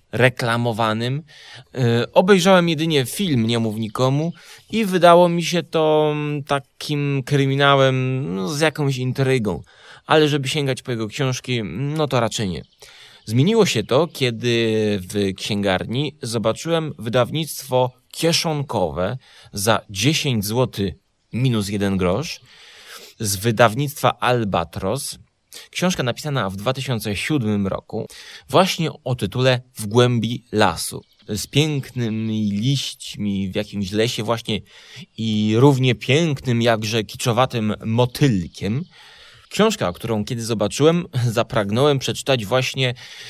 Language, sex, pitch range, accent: Polish, male, 110-140 Hz, native